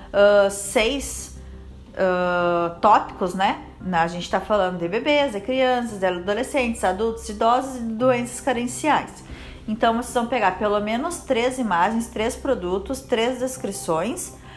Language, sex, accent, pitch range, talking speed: Portuguese, female, Brazilian, 200-255 Hz, 130 wpm